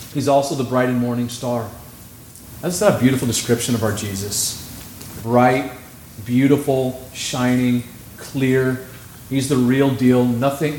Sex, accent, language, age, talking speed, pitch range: male, American, English, 40-59, 130 wpm, 120-150 Hz